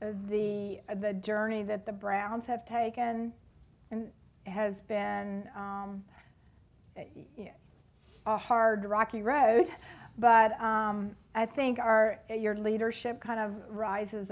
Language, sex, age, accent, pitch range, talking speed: English, female, 50-69, American, 195-225 Hz, 110 wpm